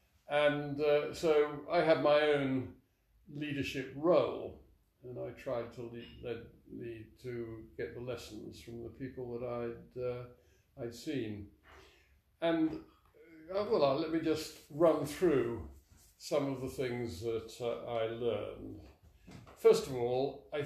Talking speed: 140 wpm